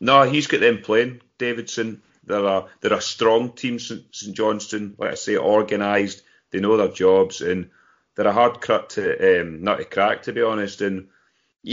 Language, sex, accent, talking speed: English, male, British, 180 wpm